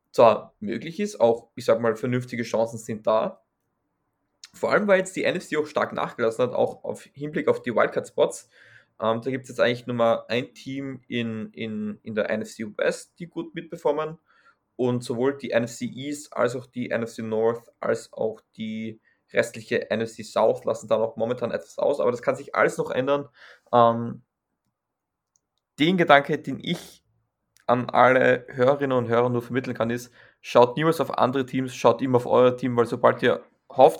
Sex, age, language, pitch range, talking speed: male, 20-39, German, 115-140 Hz, 180 wpm